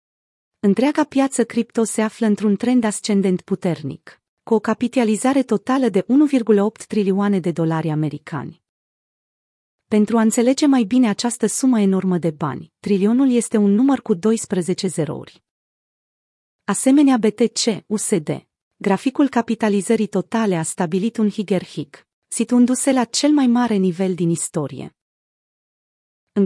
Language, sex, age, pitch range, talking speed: Romanian, female, 30-49, 185-235 Hz, 125 wpm